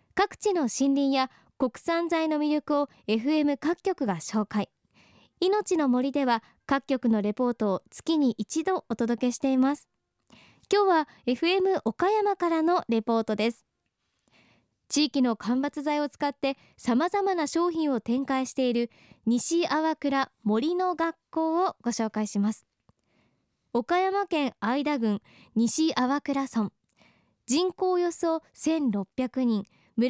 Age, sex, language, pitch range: 20-39, male, Japanese, 235-330 Hz